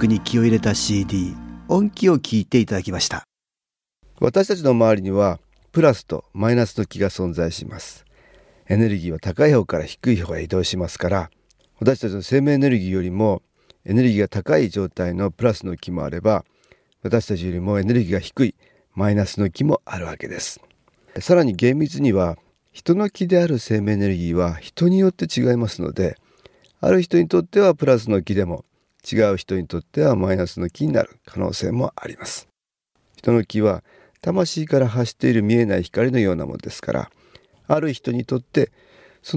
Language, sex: Japanese, male